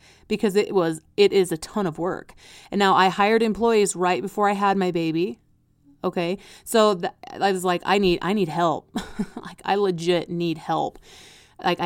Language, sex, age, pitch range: English, female, 30-49, 175-205 Hz